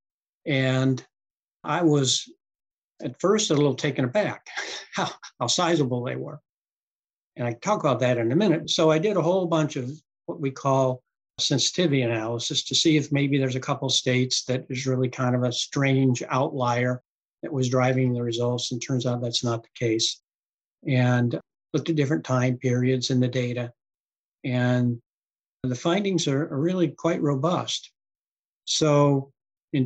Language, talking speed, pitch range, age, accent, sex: English, 165 wpm, 125-150 Hz, 60-79, American, male